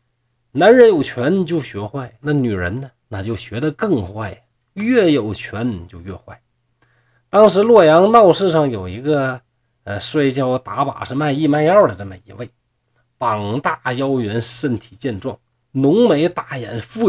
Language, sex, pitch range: Chinese, male, 115-155 Hz